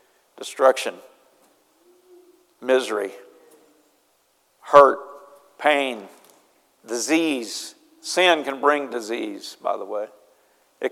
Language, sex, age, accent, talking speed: English, male, 50-69, American, 70 wpm